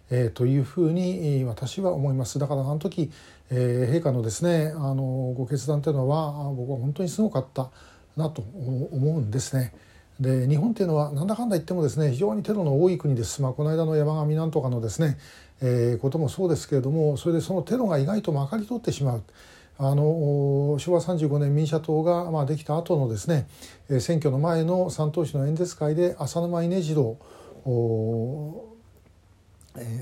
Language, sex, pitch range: Japanese, male, 125-155 Hz